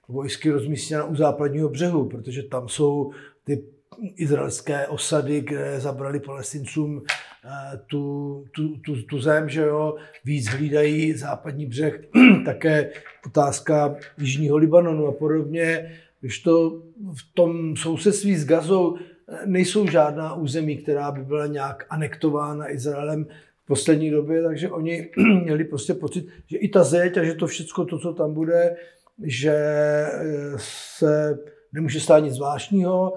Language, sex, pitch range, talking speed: Slovak, male, 145-165 Hz, 135 wpm